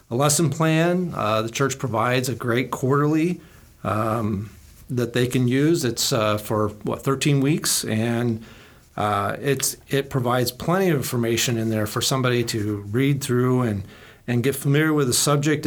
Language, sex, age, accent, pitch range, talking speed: English, male, 40-59, American, 110-140 Hz, 165 wpm